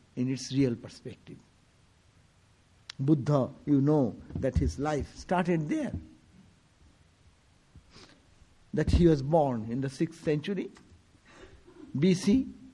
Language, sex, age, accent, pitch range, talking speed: English, male, 60-79, Indian, 125-185 Hz, 100 wpm